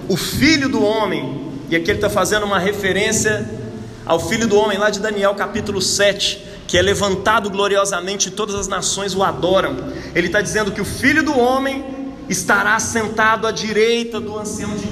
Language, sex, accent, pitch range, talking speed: Portuguese, male, Brazilian, 160-215 Hz, 180 wpm